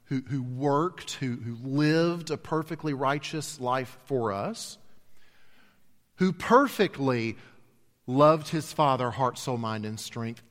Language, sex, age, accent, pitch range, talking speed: English, male, 40-59, American, 110-155 Hz, 115 wpm